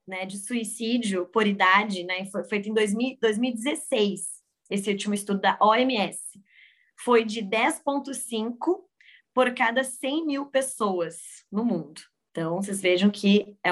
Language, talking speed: Portuguese, 130 wpm